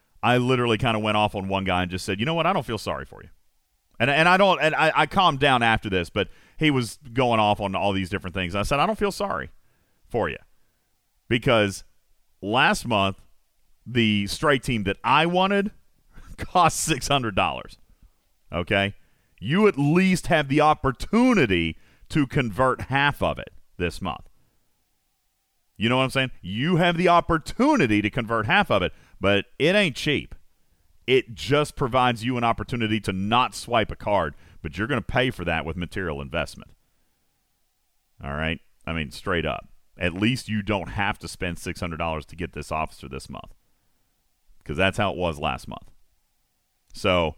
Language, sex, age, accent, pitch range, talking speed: English, male, 40-59, American, 90-145 Hz, 180 wpm